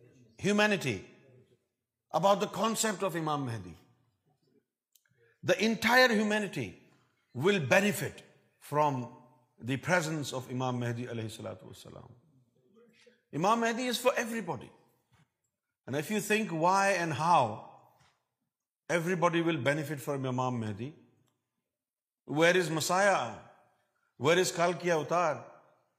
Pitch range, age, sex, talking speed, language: 125-195 Hz, 50-69, male, 100 wpm, Urdu